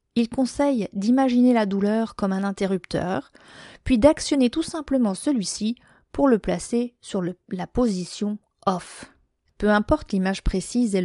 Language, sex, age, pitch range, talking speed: French, female, 30-49, 180-240 Hz, 145 wpm